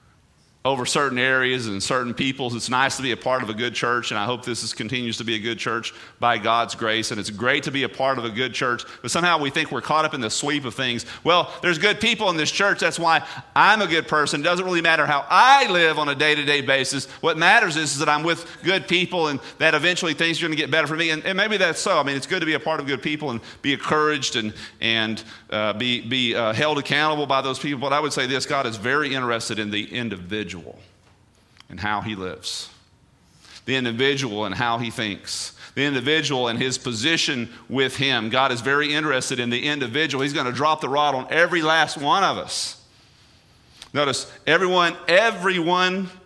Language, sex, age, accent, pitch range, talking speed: English, male, 40-59, American, 115-155 Hz, 230 wpm